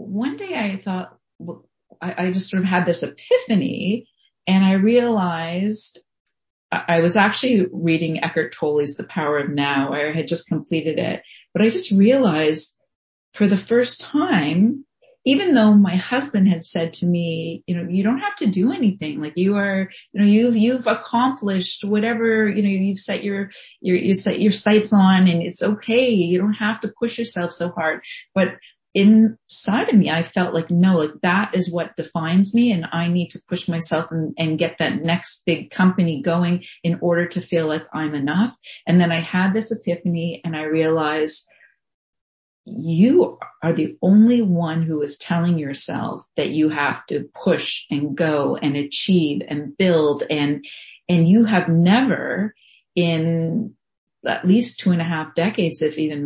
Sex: female